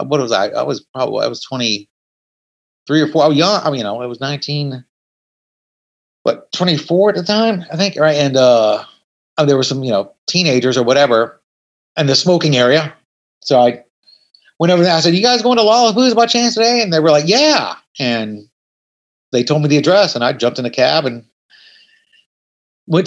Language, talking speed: English, 205 wpm